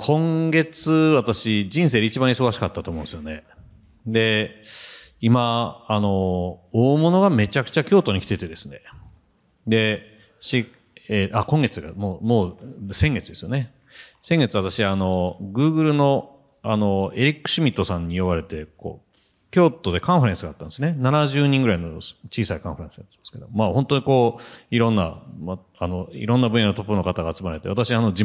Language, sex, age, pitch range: Japanese, male, 40-59, 90-130 Hz